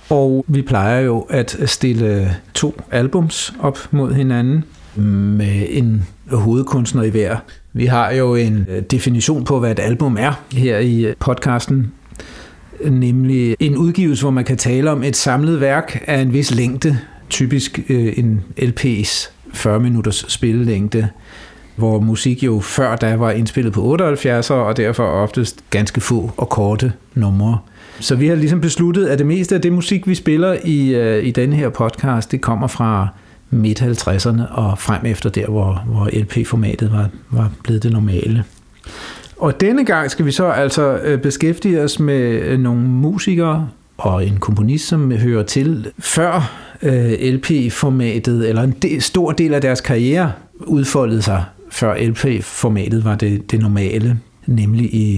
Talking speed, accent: 150 wpm, native